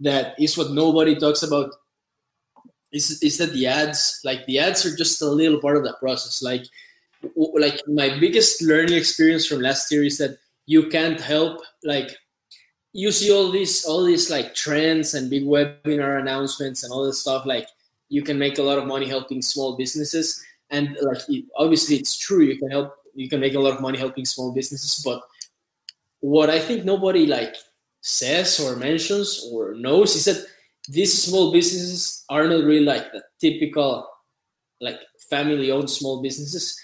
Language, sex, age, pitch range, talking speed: English, male, 20-39, 140-160 Hz, 175 wpm